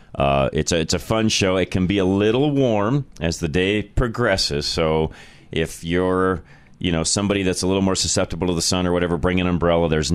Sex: male